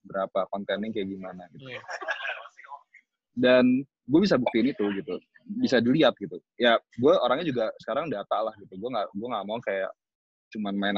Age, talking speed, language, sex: 20-39, 160 wpm, Indonesian, male